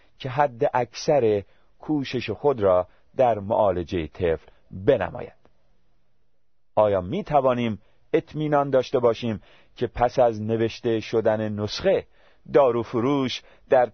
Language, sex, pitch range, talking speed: Persian, male, 85-125 Hz, 105 wpm